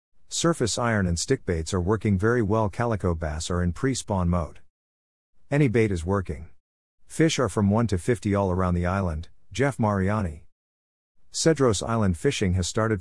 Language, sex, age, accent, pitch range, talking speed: English, male, 50-69, American, 90-115 Hz, 165 wpm